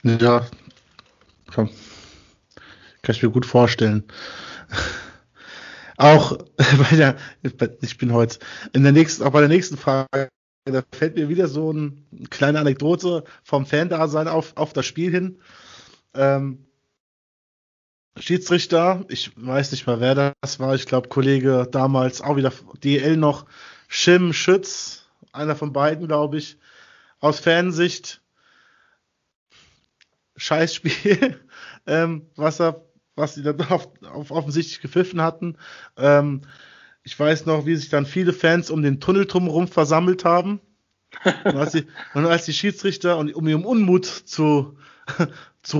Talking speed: 130 wpm